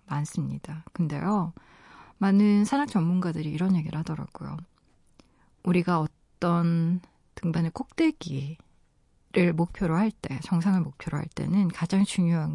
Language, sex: Korean, female